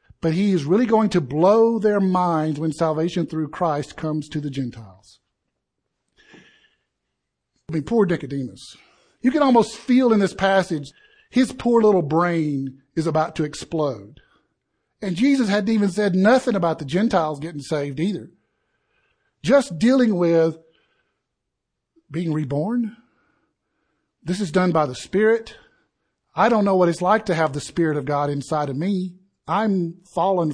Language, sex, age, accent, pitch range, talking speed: English, male, 50-69, American, 150-200 Hz, 150 wpm